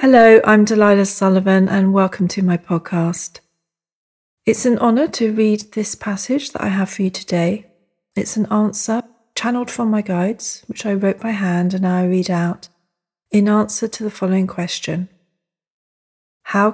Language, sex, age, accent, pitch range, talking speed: English, female, 40-59, British, 175-215 Hz, 165 wpm